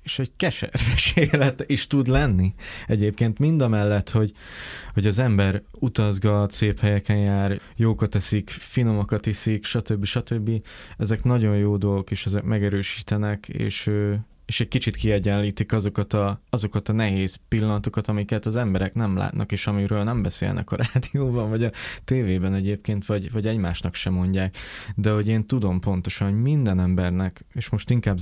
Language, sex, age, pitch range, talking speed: Hungarian, male, 20-39, 100-115 Hz, 155 wpm